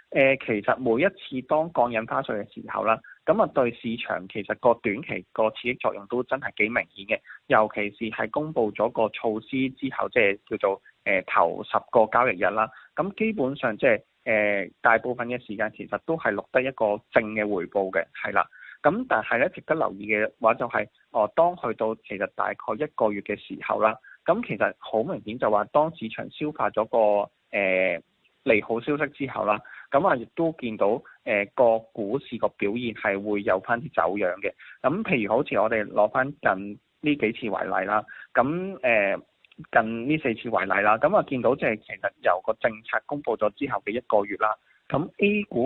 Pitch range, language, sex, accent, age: 105-135 Hz, Chinese, male, native, 20-39